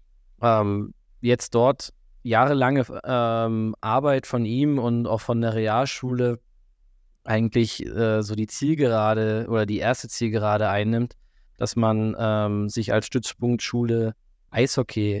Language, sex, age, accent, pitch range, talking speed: German, male, 20-39, German, 110-125 Hz, 115 wpm